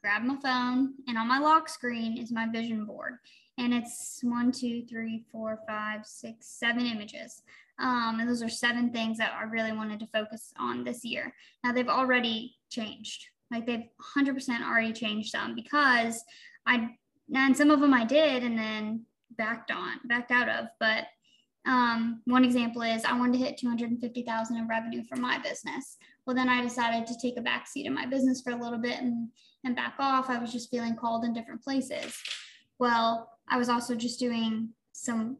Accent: American